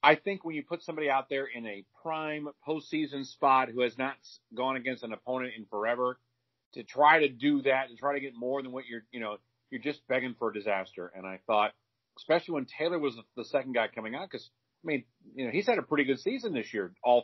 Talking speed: 240 wpm